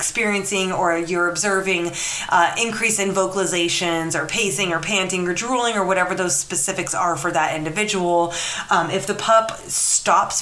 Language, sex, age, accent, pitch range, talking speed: English, female, 20-39, American, 165-195 Hz, 155 wpm